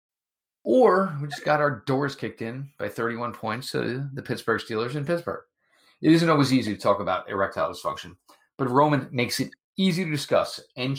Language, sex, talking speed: English, male, 185 wpm